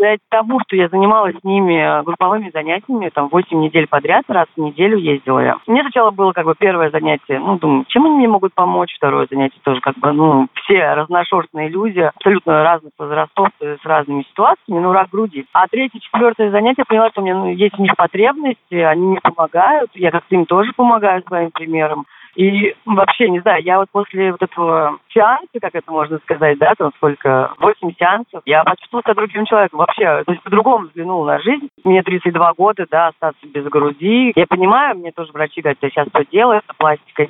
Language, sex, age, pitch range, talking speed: Russian, female, 30-49, 160-210 Hz, 195 wpm